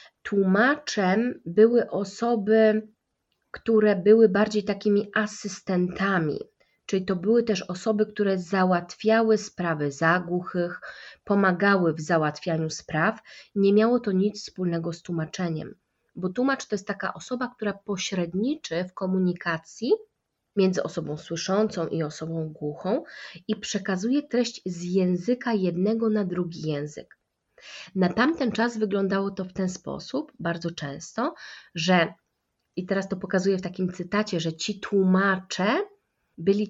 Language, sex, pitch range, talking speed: Polish, female, 180-215 Hz, 125 wpm